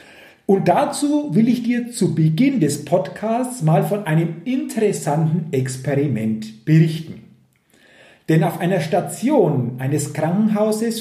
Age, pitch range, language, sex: 40-59, 140-205 Hz, German, male